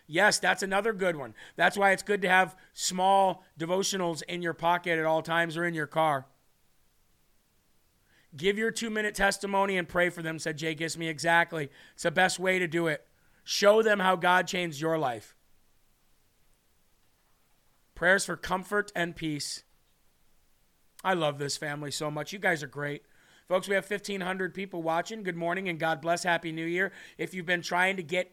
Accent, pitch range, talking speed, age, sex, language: American, 160-185 Hz, 180 wpm, 40-59, male, English